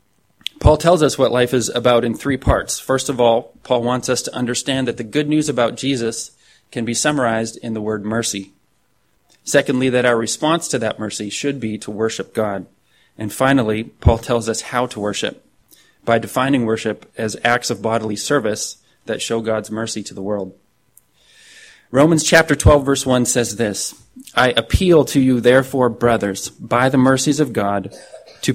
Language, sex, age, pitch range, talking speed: English, male, 30-49, 110-135 Hz, 180 wpm